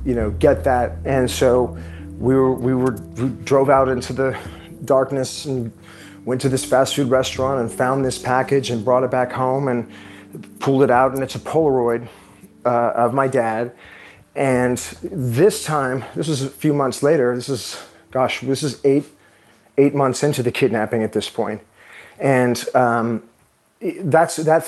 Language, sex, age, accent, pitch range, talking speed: English, male, 40-59, American, 120-140 Hz, 170 wpm